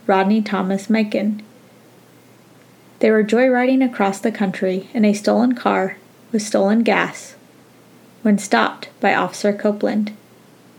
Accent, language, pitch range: American, English, 205-240 Hz